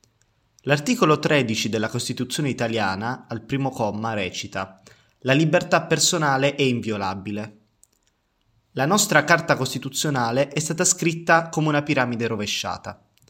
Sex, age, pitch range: male, 20-39, 115-155 Hz